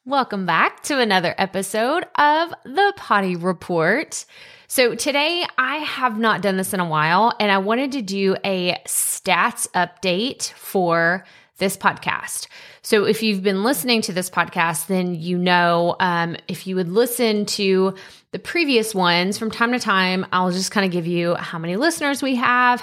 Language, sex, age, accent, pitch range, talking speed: English, female, 20-39, American, 175-225 Hz, 170 wpm